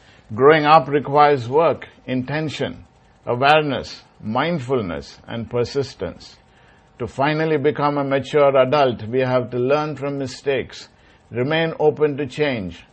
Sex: male